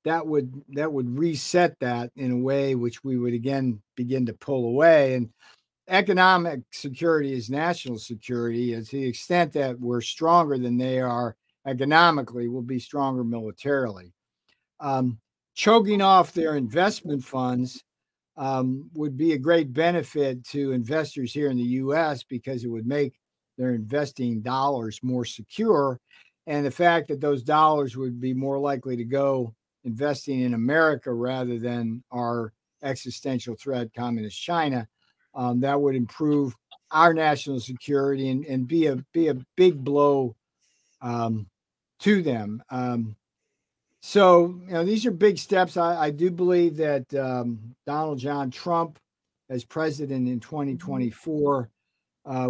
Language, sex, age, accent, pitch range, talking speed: English, male, 50-69, American, 125-155 Hz, 145 wpm